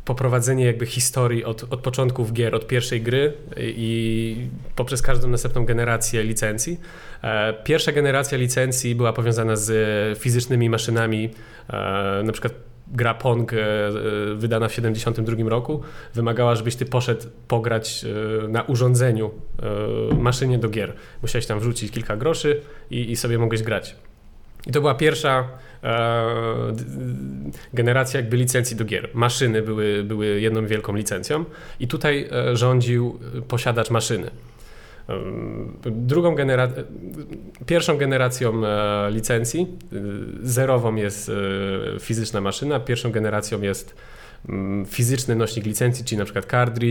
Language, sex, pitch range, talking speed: Polish, male, 110-125 Hz, 115 wpm